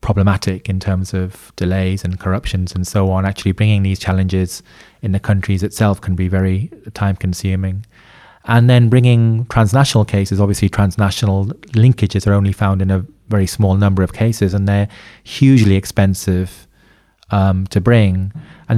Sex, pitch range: male, 95-105 Hz